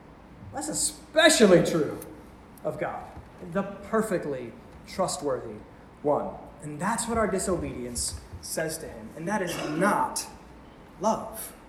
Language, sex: English, male